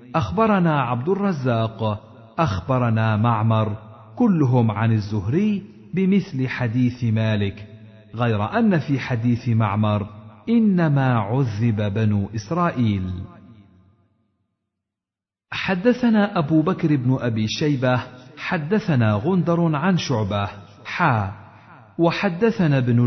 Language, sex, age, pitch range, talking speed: Arabic, male, 50-69, 110-170 Hz, 85 wpm